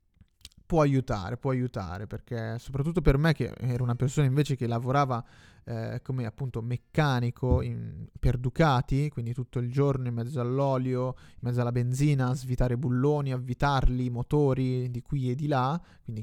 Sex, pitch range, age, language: male, 120-135 Hz, 30-49, Italian